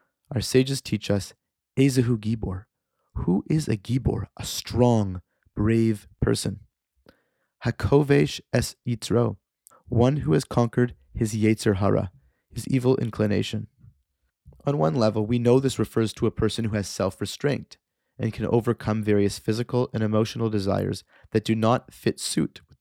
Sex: male